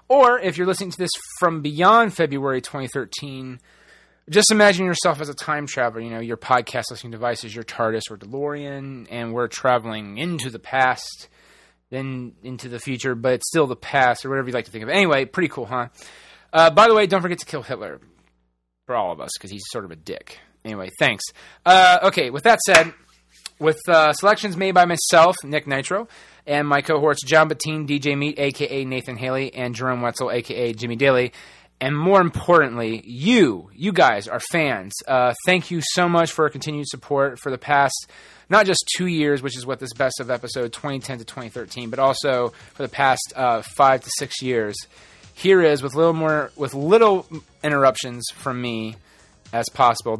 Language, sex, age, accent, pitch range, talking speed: English, male, 30-49, American, 120-155 Hz, 190 wpm